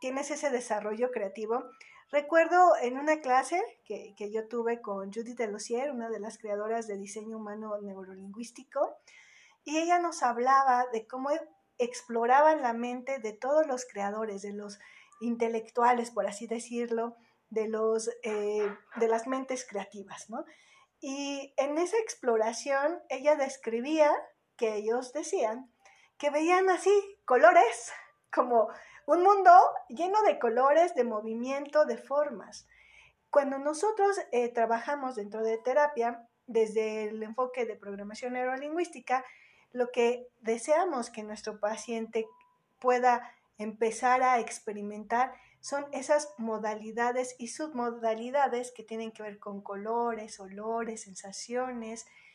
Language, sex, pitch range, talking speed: Spanish, female, 220-275 Hz, 125 wpm